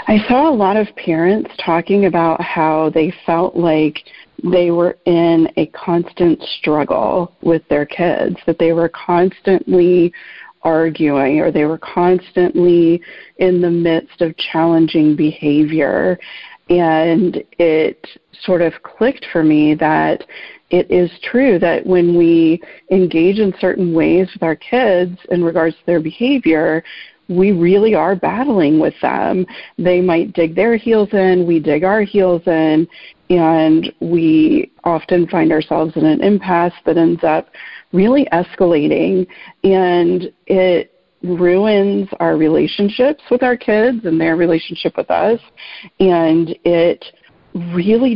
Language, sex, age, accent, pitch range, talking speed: English, female, 40-59, American, 165-190 Hz, 135 wpm